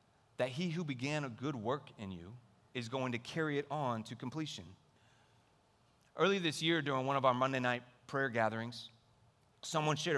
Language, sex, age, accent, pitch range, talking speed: English, male, 30-49, American, 125-160 Hz, 175 wpm